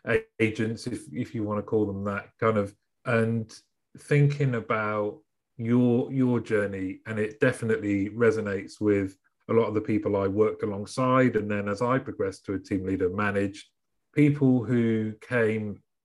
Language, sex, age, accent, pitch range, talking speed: English, male, 30-49, British, 105-135 Hz, 160 wpm